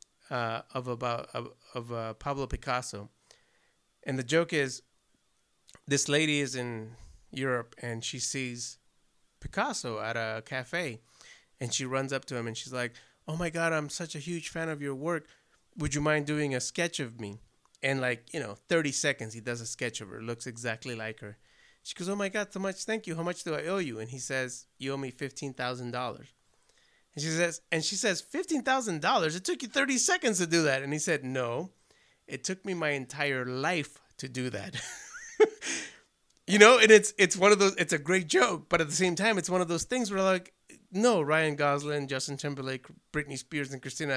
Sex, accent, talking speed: male, American, 205 wpm